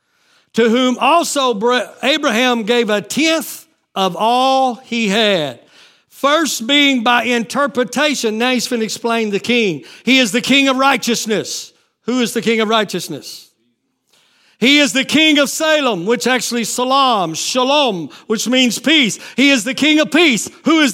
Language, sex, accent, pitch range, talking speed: English, male, American, 225-280 Hz, 150 wpm